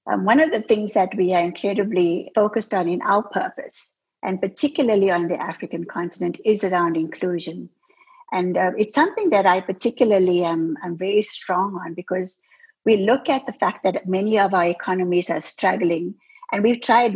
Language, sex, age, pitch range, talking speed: English, female, 50-69, 175-215 Hz, 180 wpm